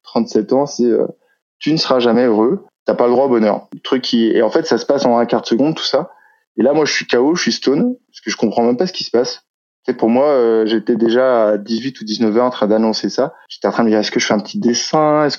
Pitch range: 115-150 Hz